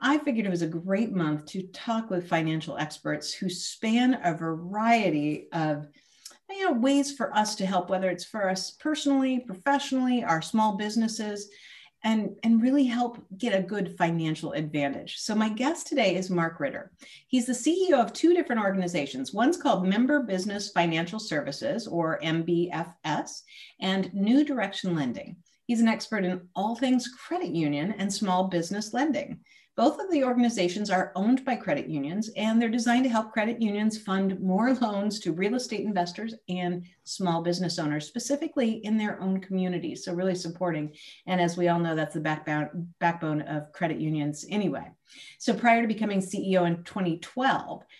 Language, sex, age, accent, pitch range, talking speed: English, female, 50-69, American, 175-240 Hz, 165 wpm